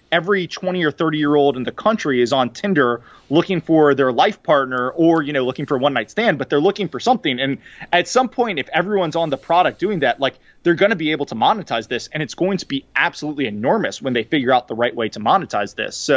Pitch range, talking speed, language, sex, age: 130-175 Hz, 255 wpm, English, male, 20-39